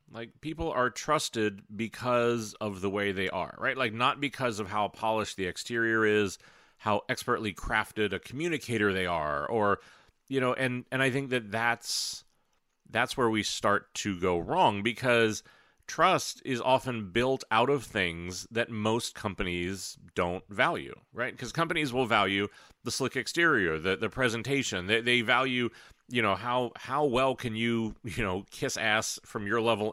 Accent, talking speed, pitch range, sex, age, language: American, 170 wpm, 105-130 Hz, male, 30-49, English